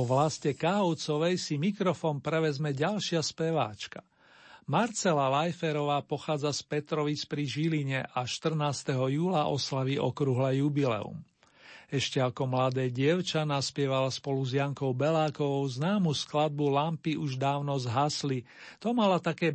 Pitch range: 130-160 Hz